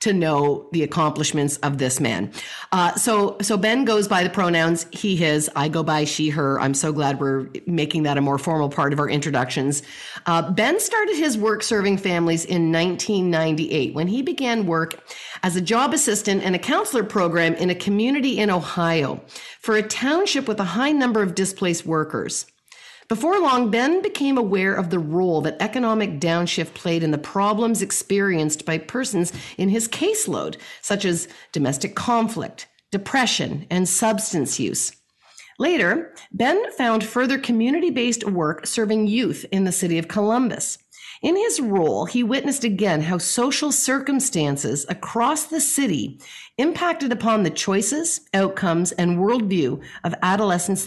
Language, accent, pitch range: English, American, 165-240 Hz